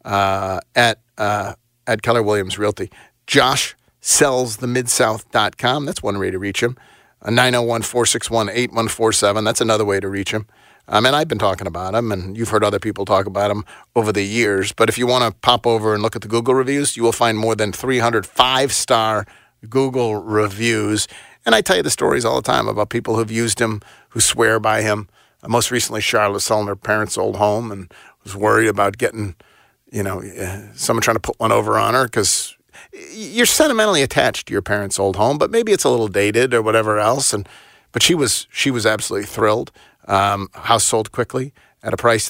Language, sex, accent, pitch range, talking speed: English, male, American, 105-125 Hz, 200 wpm